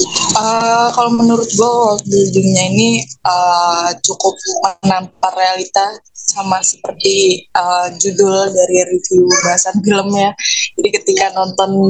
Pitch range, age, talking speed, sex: 180-210 Hz, 20-39, 110 wpm, female